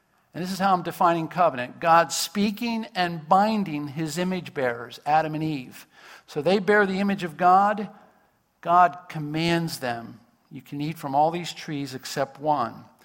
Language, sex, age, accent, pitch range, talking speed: English, male, 50-69, American, 140-180 Hz, 165 wpm